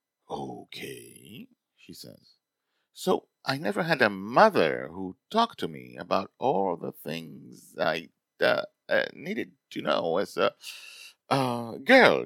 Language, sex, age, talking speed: English, male, 50-69, 130 wpm